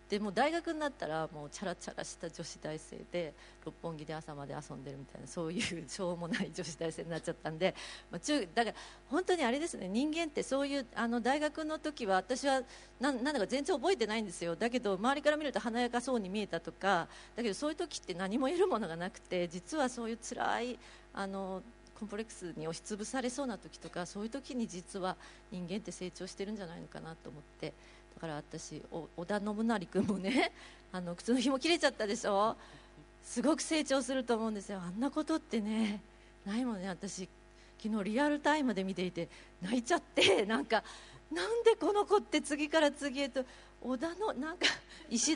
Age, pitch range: 40-59, 185-280 Hz